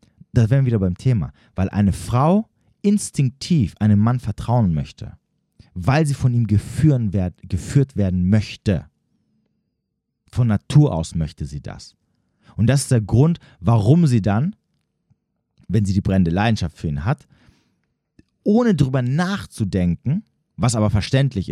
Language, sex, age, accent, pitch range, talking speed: German, male, 40-59, German, 100-135 Hz, 135 wpm